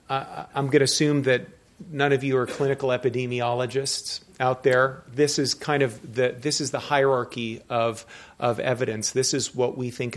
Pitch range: 115-135 Hz